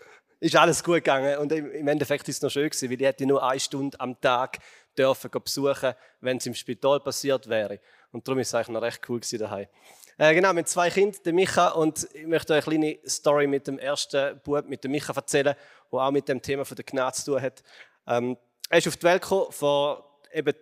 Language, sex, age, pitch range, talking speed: German, male, 30-49, 135-155 Hz, 225 wpm